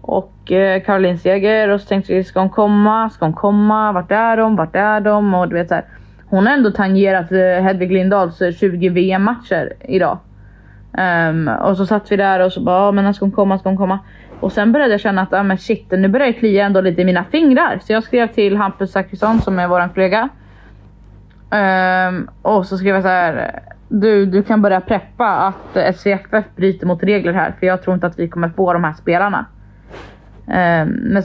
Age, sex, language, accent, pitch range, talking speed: 20-39, female, Swedish, native, 185-210 Hz, 205 wpm